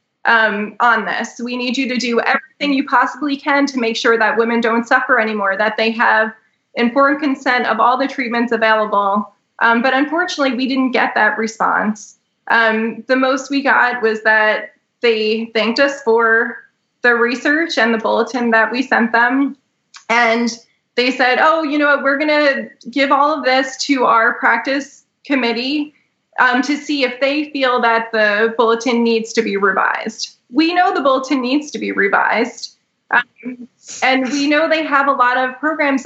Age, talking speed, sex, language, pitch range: 20-39, 175 wpm, female, English, 225-275 Hz